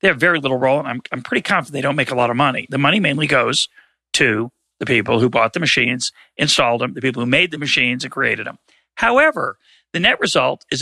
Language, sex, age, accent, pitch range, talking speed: English, male, 40-59, American, 130-195 Hz, 245 wpm